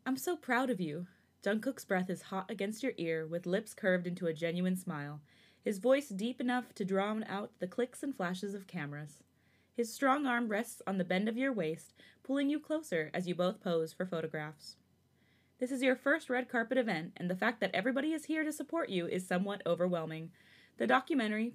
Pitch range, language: 175-245 Hz, English